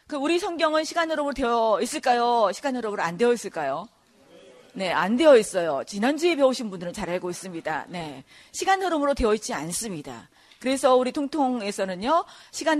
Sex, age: female, 40-59